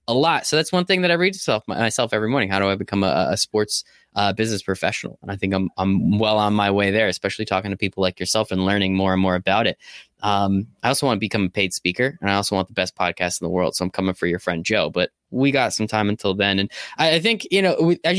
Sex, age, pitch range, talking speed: male, 10-29, 100-140 Hz, 285 wpm